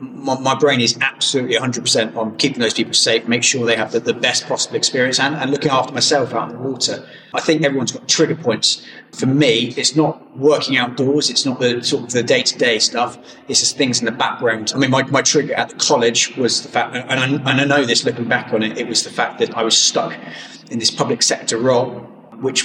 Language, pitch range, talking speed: English, 120-140 Hz, 240 wpm